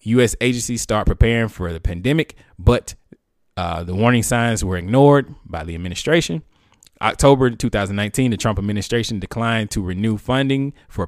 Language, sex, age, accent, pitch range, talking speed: English, male, 20-39, American, 95-120 Hz, 145 wpm